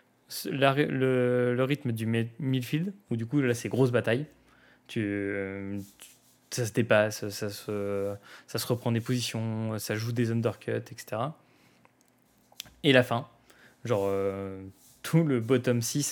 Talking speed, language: 155 wpm, French